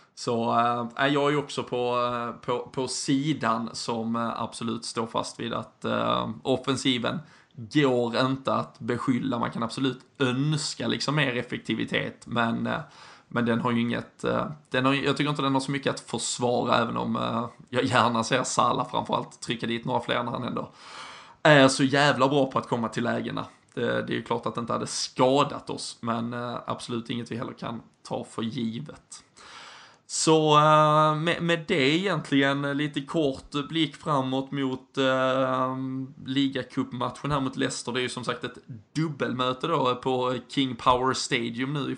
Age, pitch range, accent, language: 20-39, 120-140 Hz, native, Swedish